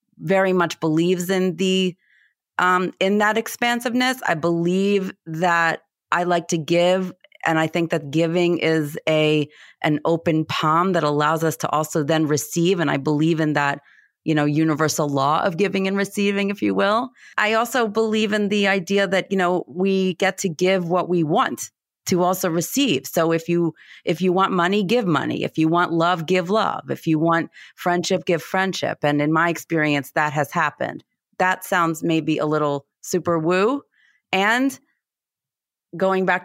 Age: 30-49